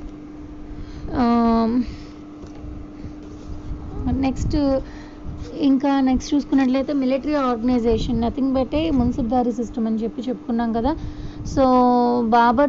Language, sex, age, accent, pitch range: Telugu, female, 20-39, native, 230-265 Hz